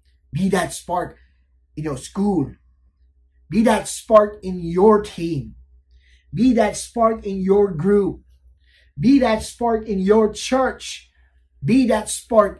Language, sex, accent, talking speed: English, male, American, 130 wpm